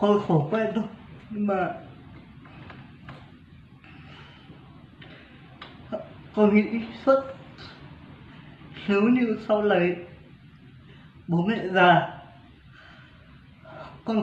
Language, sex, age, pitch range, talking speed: Vietnamese, male, 20-39, 175-220 Hz, 70 wpm